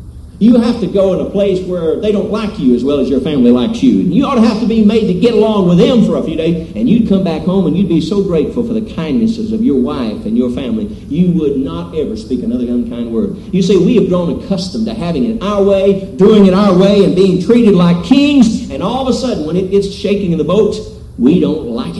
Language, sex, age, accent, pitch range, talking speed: English, male, 50-69, American, 160-230 Hz, 265 wpm